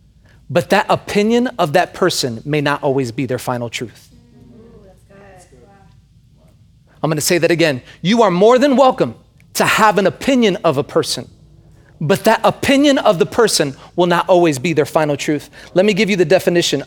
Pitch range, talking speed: 150-220 Hz, 180 wpm